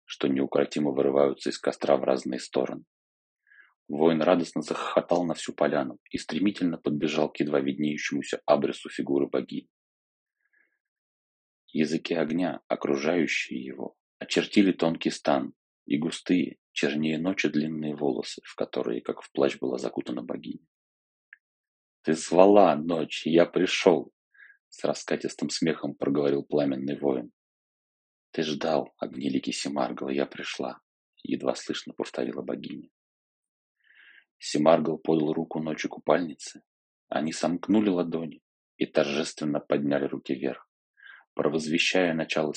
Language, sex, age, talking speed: Russian, male, 30-49, 115 wpm